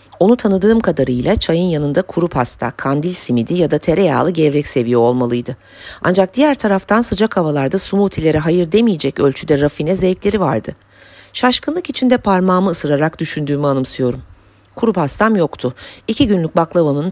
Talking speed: 135 wpm